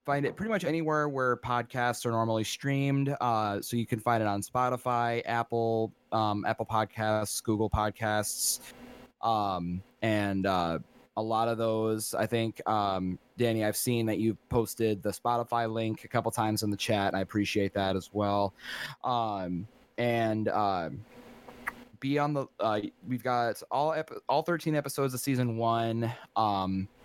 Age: 20-39